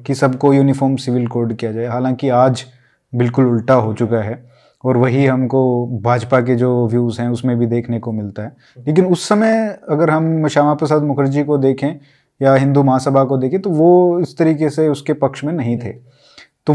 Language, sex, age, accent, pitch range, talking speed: Hindi, male, 20-39, native, 130-170 Hz, 195 wpm